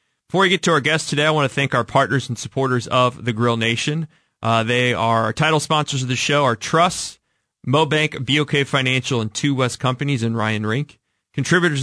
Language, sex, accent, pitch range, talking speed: English, male, American, 105-135 Hz, 205 wpm